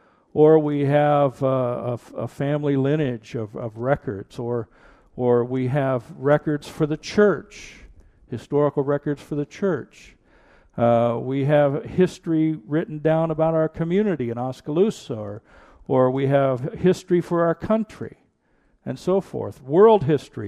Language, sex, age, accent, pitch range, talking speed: English, male, 50-69, American, 125-160 Hz, 145 wpm